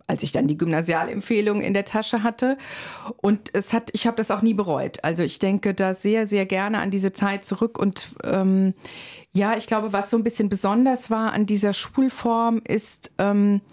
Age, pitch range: 40-59, 180-220 Hz